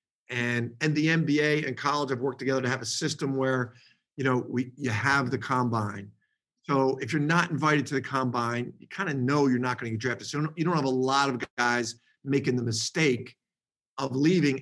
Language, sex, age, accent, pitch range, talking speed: English, male, 50-69, American, 125-155 Hz, 220 wpm